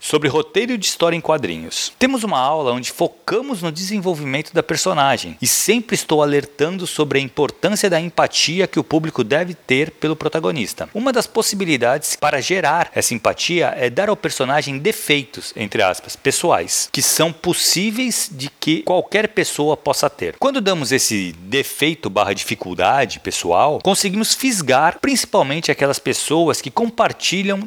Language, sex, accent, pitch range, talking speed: Portuguese, male, Brazilian, 145-205 Hz, 150 wpm